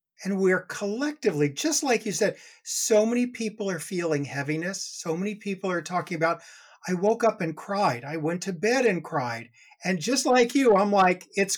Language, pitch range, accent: English, 160-205 Hz, American